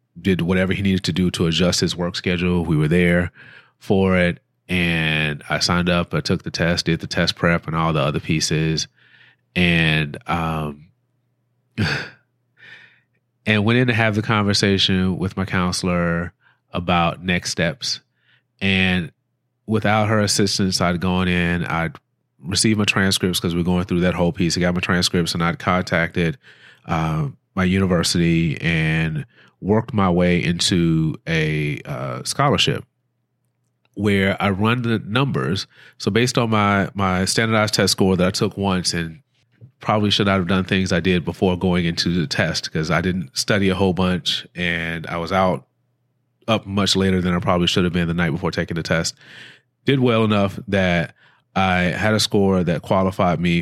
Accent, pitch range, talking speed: American, 85-105 Hz, 170 wpm